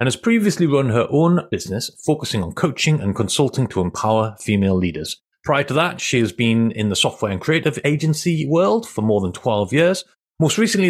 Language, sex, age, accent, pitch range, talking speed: English, male, 40-59, British, 105-150 Hz, 200 wpm